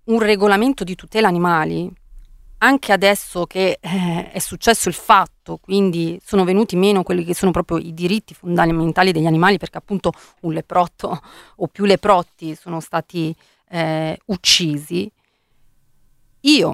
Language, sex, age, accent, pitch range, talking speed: Italian, female, 30-49, native, 170-210 Hz, 135 wpm